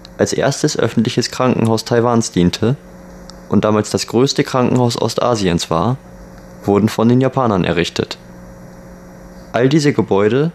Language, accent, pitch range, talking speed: German, German, 85-130 Hz, 120 wpm